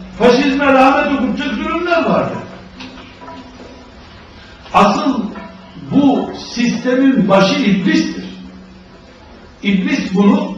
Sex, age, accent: male, 60-79, native